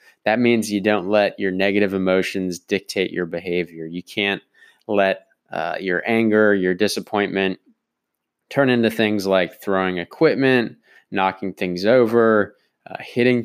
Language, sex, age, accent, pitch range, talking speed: English, male, 20-39, American, 95-110 Hz, 135 wpm